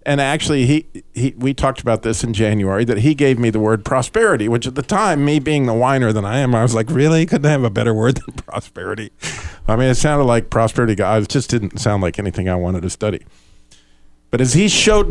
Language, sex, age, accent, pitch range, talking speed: English, male, 50-69, American, 100-130 Hz, 240 wpm